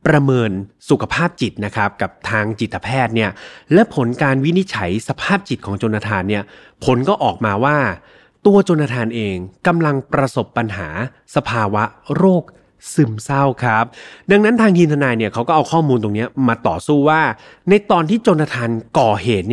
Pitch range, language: 110-155 Hz, Thai